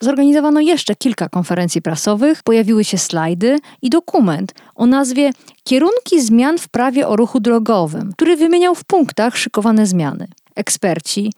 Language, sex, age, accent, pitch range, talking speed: Polish, female, 40-59, native, 200-300 Hz, 135 wpm